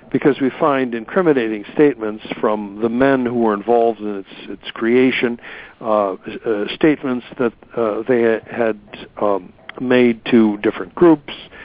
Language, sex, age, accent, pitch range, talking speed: English, male, 60-79, American, 110-135 Hz, 145 wpm